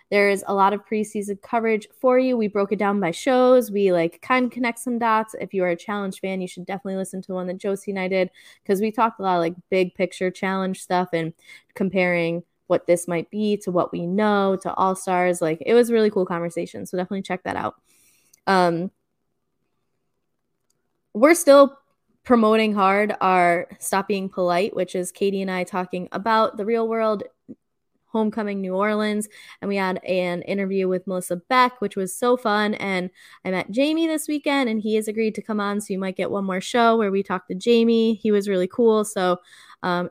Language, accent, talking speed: English, American, 210 wpm